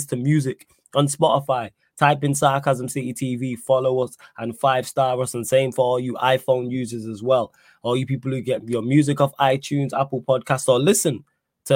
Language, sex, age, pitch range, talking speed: English, male, 20-39, 115-135 Hz, 195 wpm